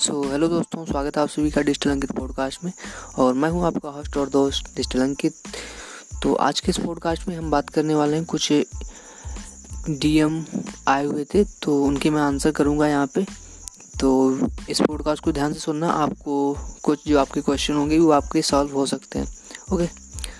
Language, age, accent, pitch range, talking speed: Hindi, 20-39, native, 135-160 Hz, 190 wpm